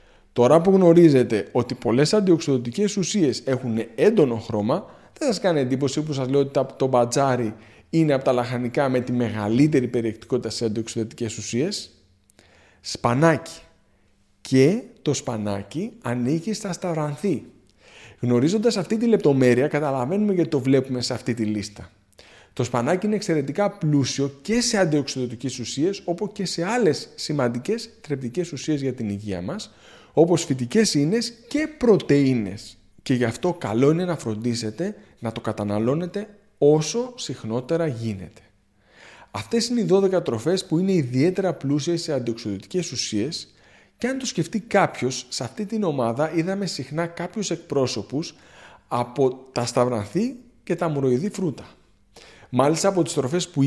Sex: male